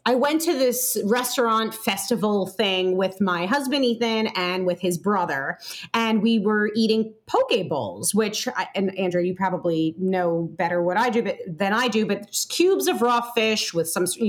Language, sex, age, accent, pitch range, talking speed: English, female, 30-49, American, 195-265 Hz, 175 wpm